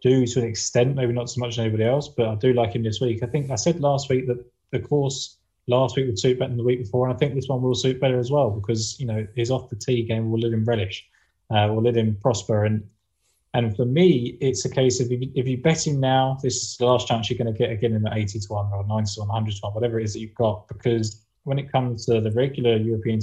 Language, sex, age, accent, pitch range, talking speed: English, male, 20-39, British, 110-135 Hz, 295 wpm